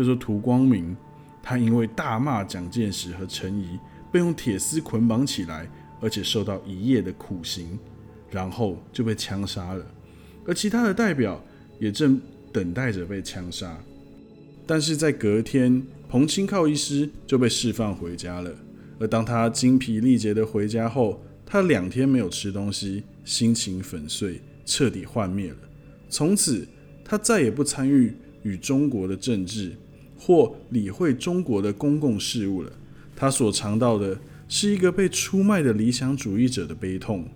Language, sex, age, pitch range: Chinese, male, 20-39, 100-140 Hz